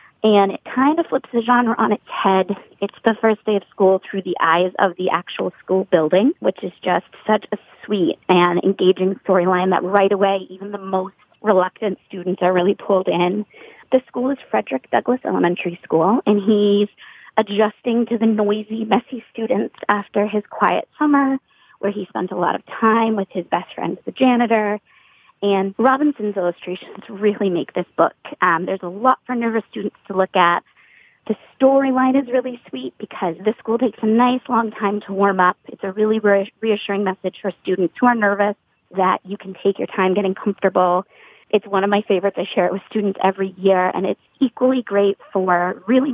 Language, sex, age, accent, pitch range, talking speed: English, female, 30-49, American, 185-225 Hz, 190 wpm